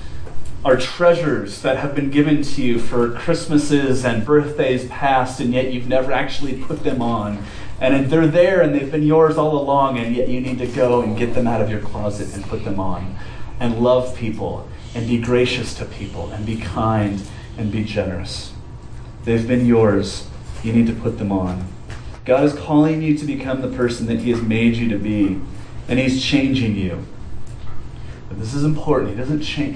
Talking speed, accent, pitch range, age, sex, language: 190 wpm, American, 105-125 Hz, 30-49, male, English